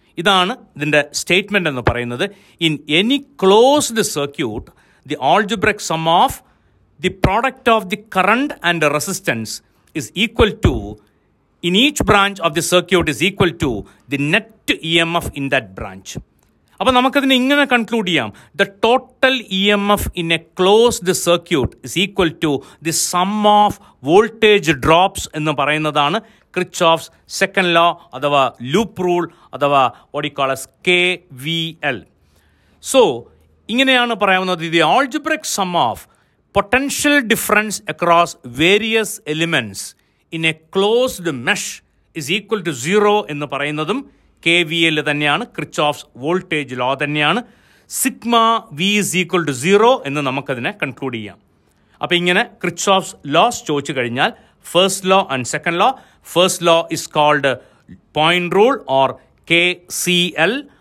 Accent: native